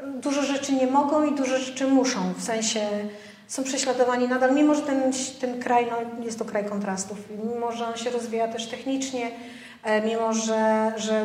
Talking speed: 180 wpm